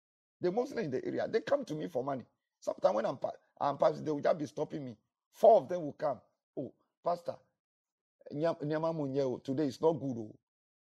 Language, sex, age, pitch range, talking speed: English, male, 50-69, 135-180 Hz, 190 wpm